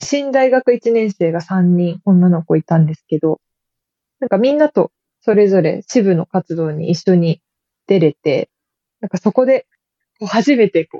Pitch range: 175-230 Hz